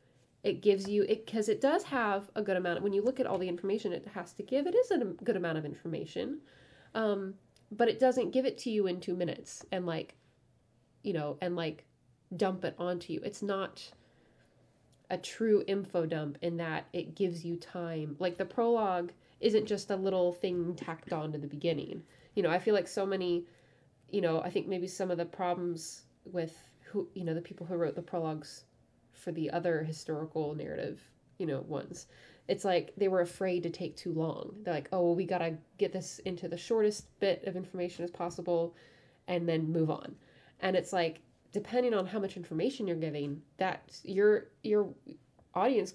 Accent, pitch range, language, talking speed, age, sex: American, 165-195 Hz, English, 195 wpm, 20-39, female